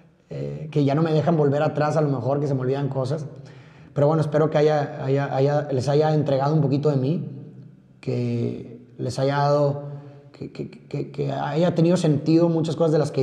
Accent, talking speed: Mexican, 210 wpm